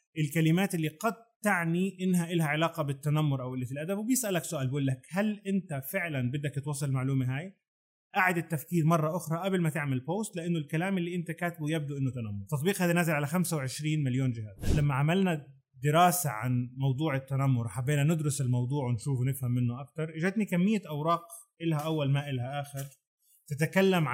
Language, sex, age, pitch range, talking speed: Arabic, male, 30-49, 135-170 Hz, 170 wpm